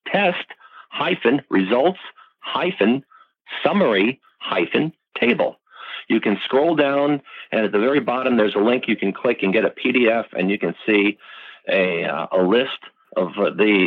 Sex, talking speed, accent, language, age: male, 130 wpm, American, English, 50-69